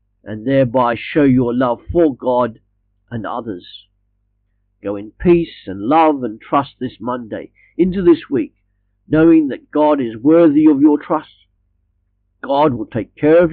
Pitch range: 100-155 Hz